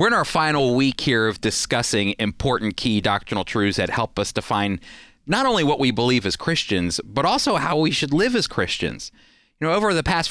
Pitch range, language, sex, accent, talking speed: 105-145 Hz, English, male, American, 210 wpm